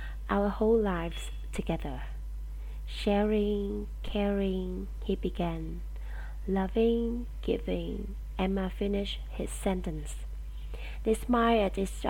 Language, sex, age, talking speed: English, female, 20-39, 90 wpm